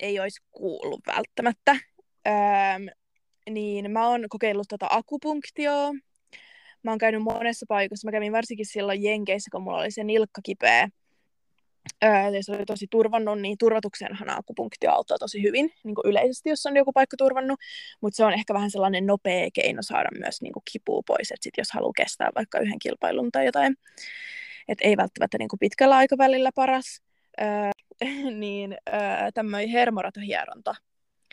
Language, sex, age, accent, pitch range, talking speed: Finnish, female, 20-39, native, 205-250 Hz, 155 wpm